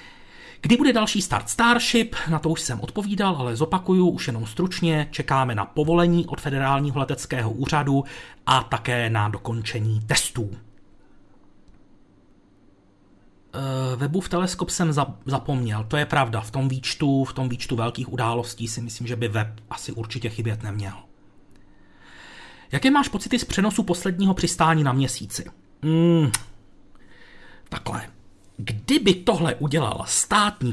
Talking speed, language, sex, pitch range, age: 125 wpm, Czech, male, 115-160 Hz, 40-59